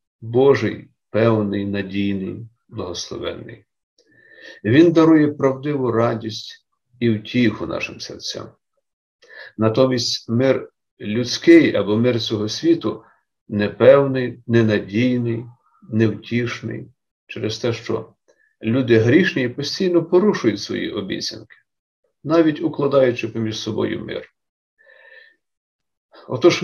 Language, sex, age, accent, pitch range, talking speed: Ukrainian, male, 50-69, native, 110-150 Hz, 85 wpm